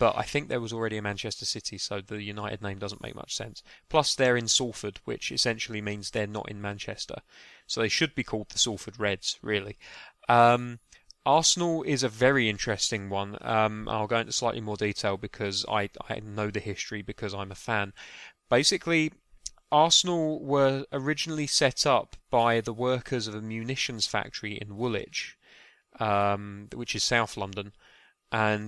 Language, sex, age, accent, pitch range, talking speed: English, male, 20-39, British, 100-115 Hz, 170 wpm